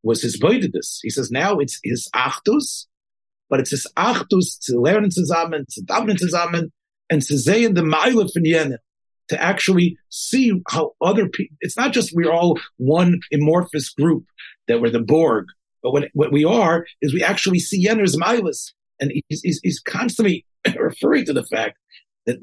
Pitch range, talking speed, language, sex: 145-200 Hz, 175 wpm, English, male